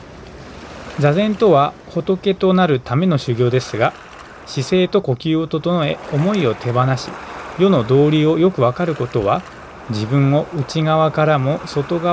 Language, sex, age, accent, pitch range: Japanese, male, 20-39, native, 125-175 Hz